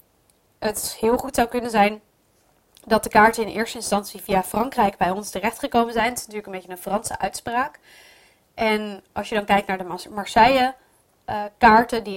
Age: 20-39